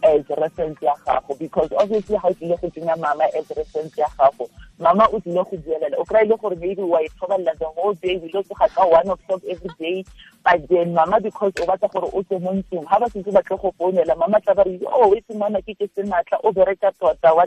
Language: Italian